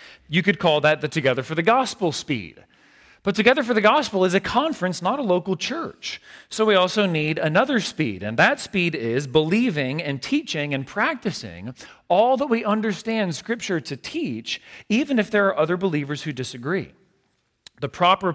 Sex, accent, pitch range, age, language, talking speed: male, American, 150-215 Hz, 40-59, English, 175 wpm